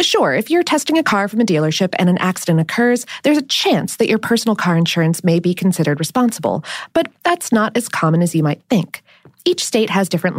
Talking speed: 220 wpm